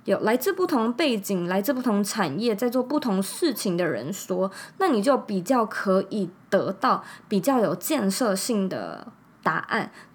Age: 20-39